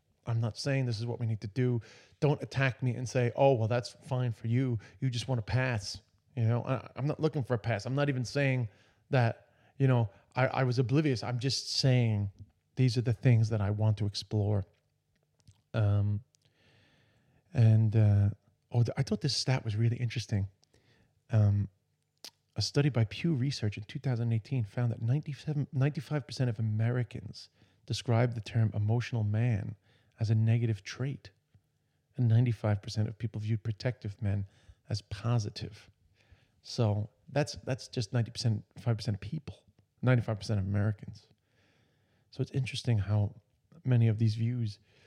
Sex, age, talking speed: male, 30-49, 165 wpm